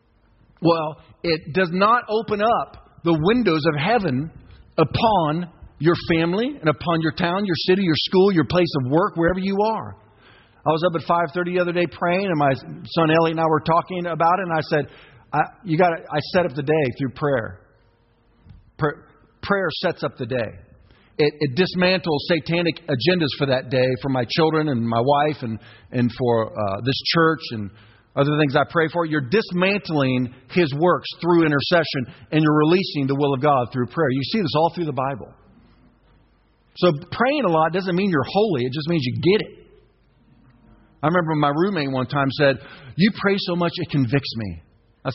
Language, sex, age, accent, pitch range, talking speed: English, male, 50-69, American, 130-175 Hz, 190 wpm